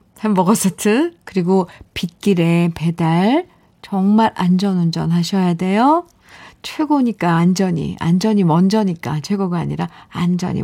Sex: female